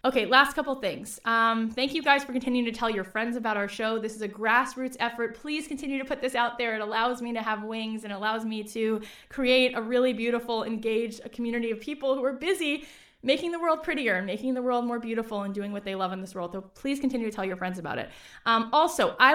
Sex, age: female, 20-39